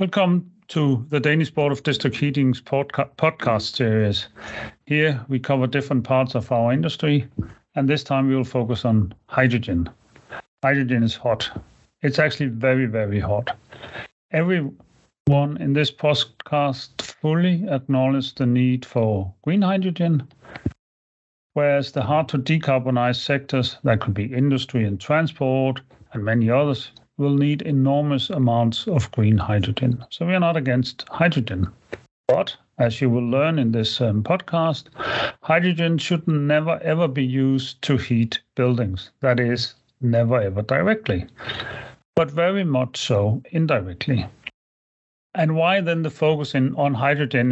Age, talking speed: 40-59, 140 wpm